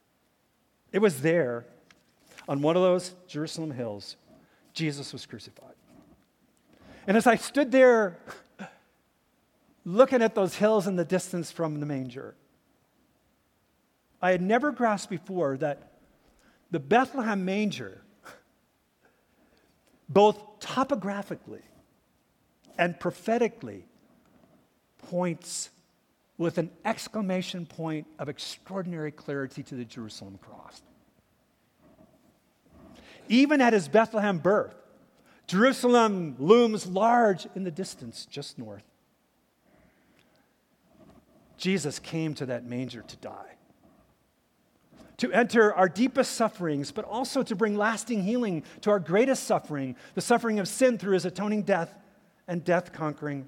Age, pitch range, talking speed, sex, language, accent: 50-69, 155-225 Hz, 110 wpm, male, English, American